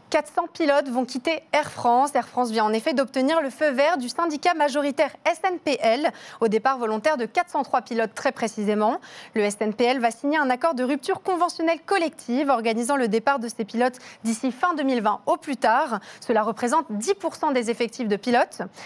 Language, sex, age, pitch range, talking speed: French, female, 30-49, 230-300 Hz, 180 wpm